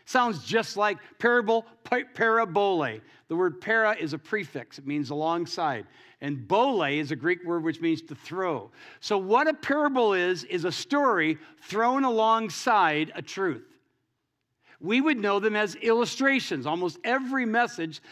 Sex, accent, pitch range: male, American, 175-250 Hz